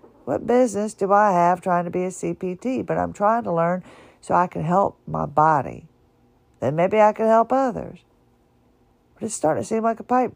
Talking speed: 205 wpm